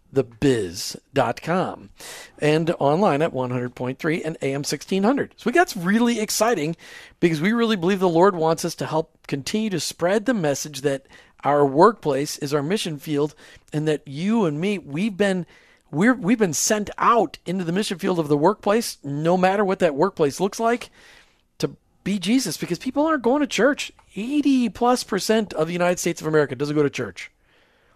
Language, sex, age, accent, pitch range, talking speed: English, male, 40-59, American, 150-200 Hz, 180 wpm